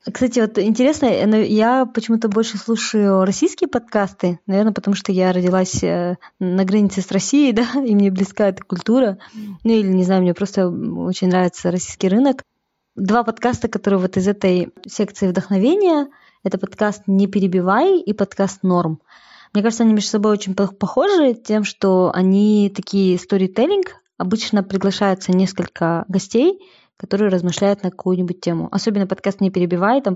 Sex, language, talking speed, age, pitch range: female, Russian, 150 wpm, 20-39, 185-215 Hz